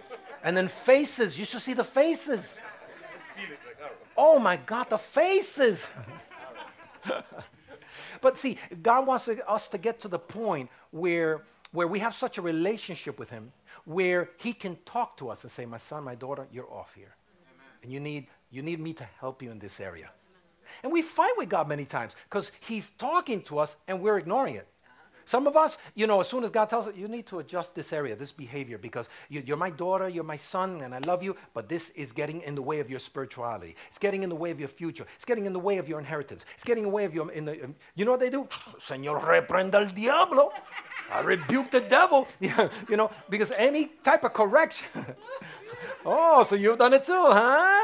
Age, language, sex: 60-79, English, male